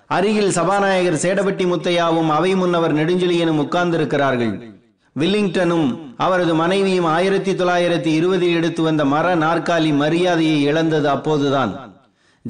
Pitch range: 160-185 Hz